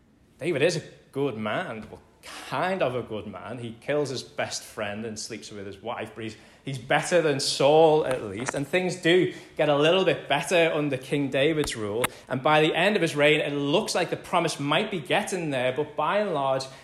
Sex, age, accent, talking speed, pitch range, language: male, 20-39, British, 215 wpm, 130-170 Hz, English